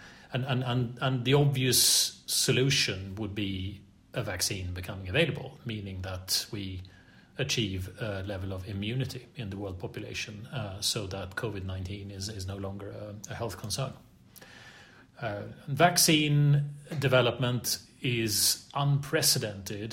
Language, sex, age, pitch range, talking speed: English, male, 30-49, 100-130 Hz, 130 wpm